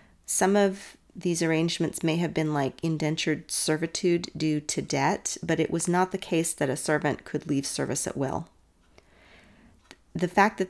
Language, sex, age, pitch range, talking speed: English, female, 40-59, 150-180 Hz, 170 wpm